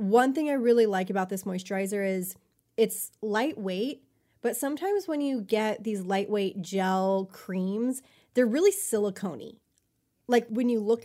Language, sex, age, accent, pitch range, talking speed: English, female, 20-39, American, 200-245 Hz, 145 wpm